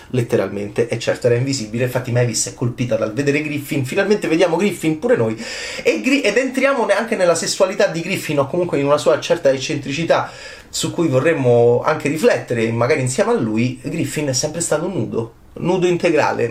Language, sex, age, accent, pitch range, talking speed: Italian, male, 30-49, native, 120-190 Hz, 180 wpm